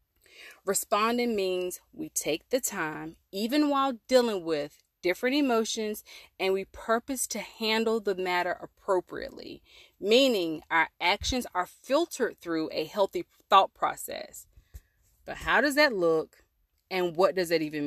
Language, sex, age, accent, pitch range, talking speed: English, female, 30-49, American, 175-235 Hz, 135 wpm